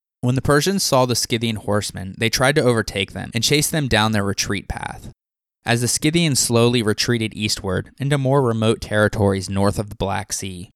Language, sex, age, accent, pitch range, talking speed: English, male, 20-39, American, 100-125 Hz, 190 wpm